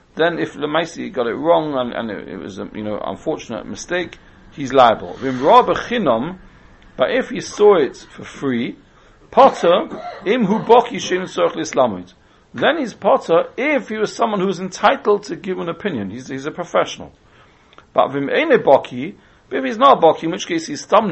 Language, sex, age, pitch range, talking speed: English, male, 40-59, 145-230 Hz, 150 wpm